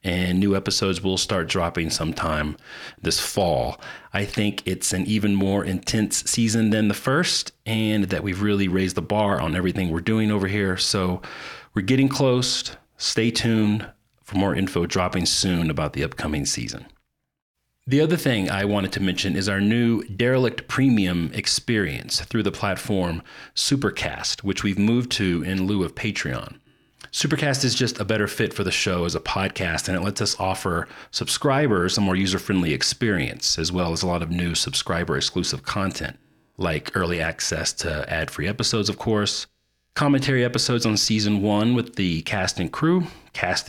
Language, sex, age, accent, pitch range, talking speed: English, male, 40-59, American, 90-115 Hz, 170 wpm